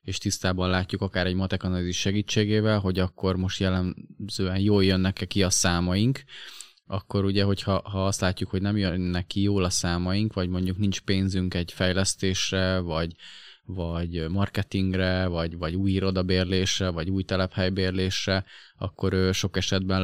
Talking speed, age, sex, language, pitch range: 145 wpm, 20-39, male, Hungarian, 90-100 Hz